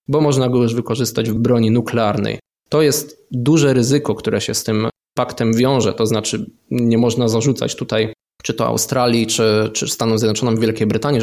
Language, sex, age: Polish, male, 20-39